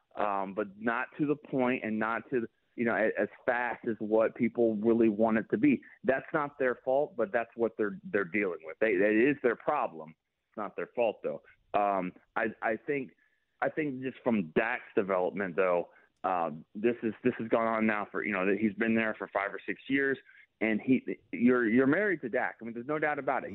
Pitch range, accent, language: 110-135 Hz, American, English